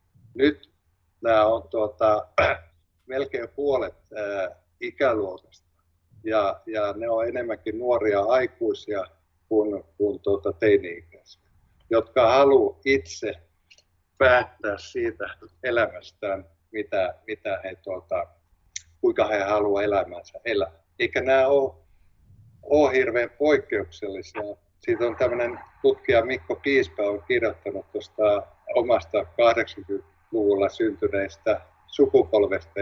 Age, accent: 50-69, native